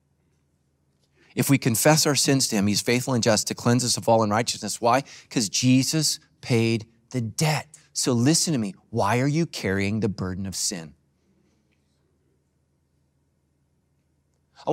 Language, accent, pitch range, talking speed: English, American, 80-125 Hz, 145 wpm